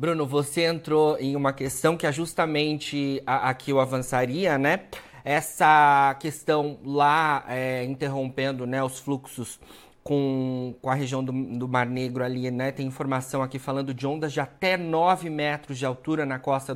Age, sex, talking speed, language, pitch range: 30-49, male, 160 wpm, Portuguese, 135-160 Hz